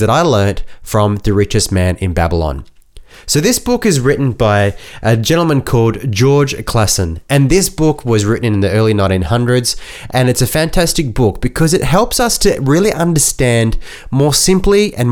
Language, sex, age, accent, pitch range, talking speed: English, male, 20-39, Australian, 105-145 Hz, 175 wpm